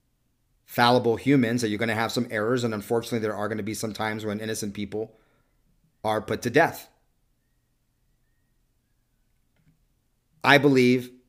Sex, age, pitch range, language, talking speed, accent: male, 40-59, 110-130 Hz, English, 145 wpm, American